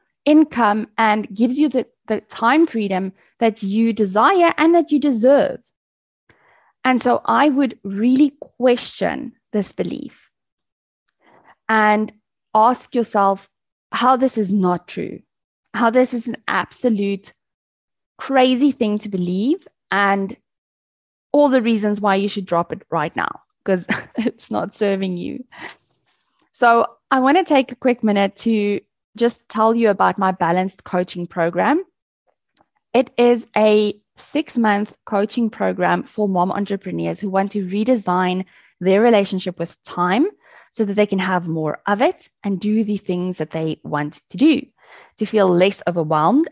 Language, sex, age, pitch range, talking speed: English, female, 20-39, 195-255 Hz, 145 wpm